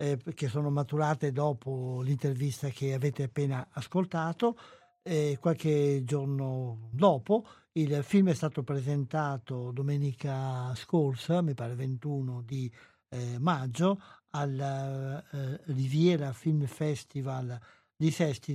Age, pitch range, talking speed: 60-79, 130-155 Hz, 105 wpm